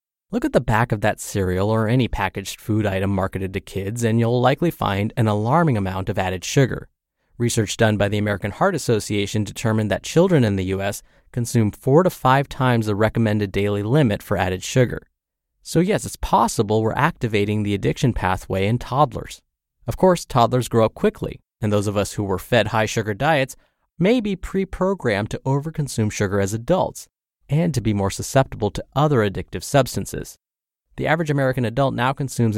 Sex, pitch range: male, 100-135 Hz